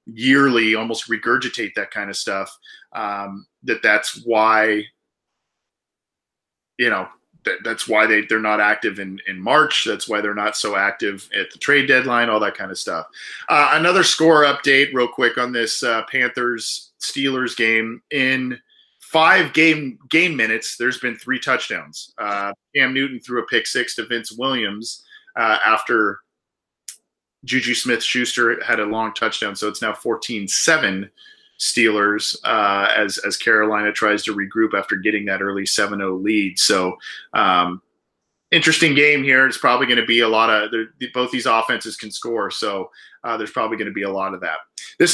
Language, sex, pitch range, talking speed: English, male, 110-135 Hz, 165 wpm